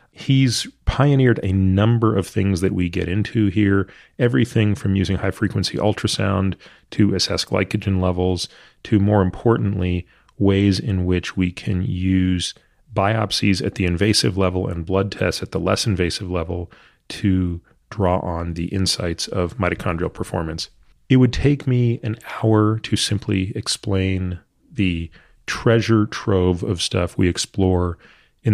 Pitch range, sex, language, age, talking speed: 90-105 Hz, male, English, 30-49, 140 wpm